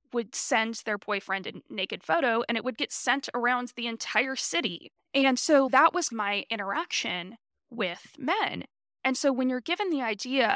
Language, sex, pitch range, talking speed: English, female, 210-265 Hz, 175 wpm